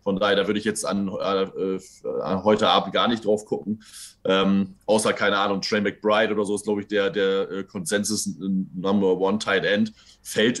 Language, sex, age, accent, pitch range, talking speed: German, male, 20-39, German, 95-105 Hz, 200 wpm